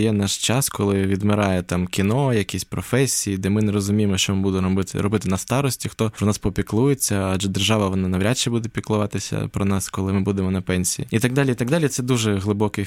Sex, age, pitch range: male, 20-39, 95-115 Hz